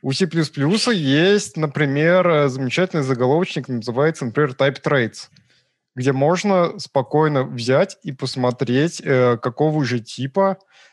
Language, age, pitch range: Russian, 20-39, 125-175 Hz